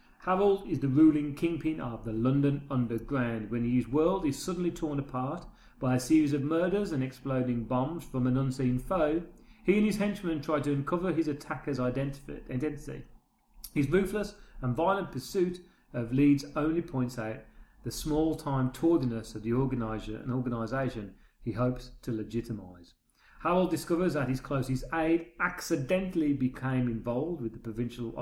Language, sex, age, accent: English, male, 40-59, British